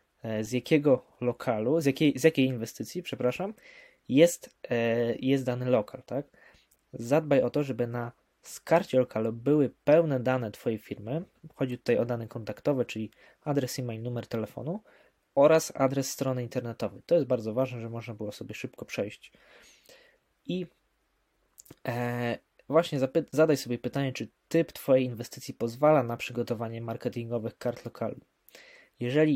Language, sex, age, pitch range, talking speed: Polish, male, 20-39, 120-145 Hz, 135 wpm